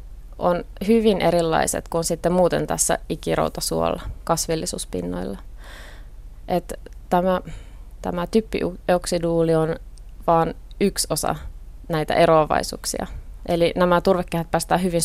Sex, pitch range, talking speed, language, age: female, 160-195 Hz, 95 wpm, Finnish, 20-39